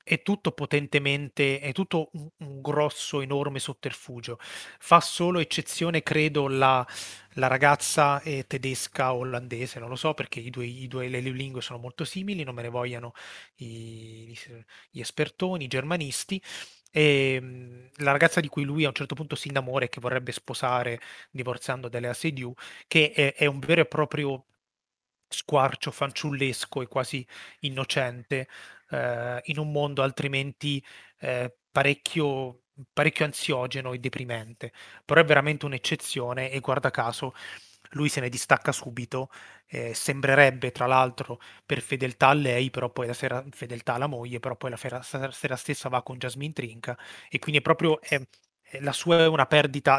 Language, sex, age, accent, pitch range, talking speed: Italian, male, 30-49, native, 125-145 Hz, 160 wpm